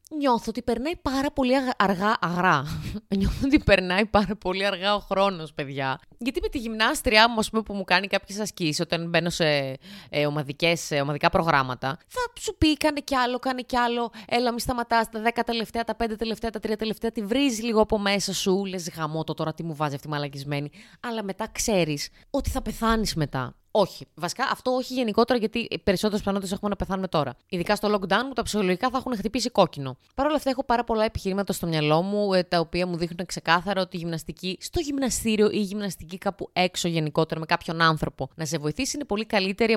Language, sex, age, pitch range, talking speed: Greek, female, 20-39, 170-230 Hz, 200 wpm